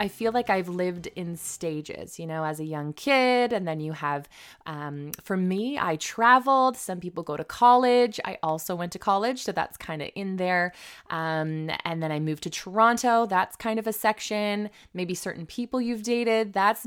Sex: female